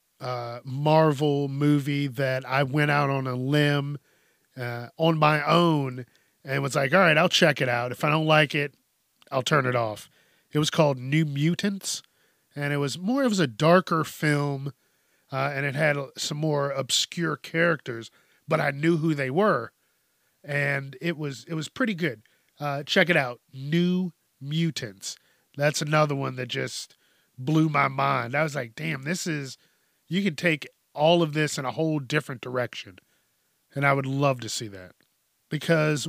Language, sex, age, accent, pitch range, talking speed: English, male, 40-59, American, 130-160 Hz, 175 wpm